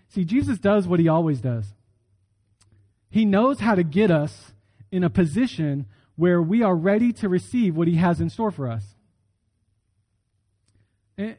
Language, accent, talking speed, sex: English, American, 160 wpm, male